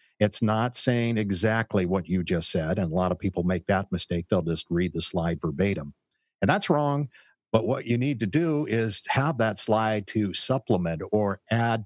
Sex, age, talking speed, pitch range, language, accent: male, 50-69, 195 wpm, 90-110 Hz, English, American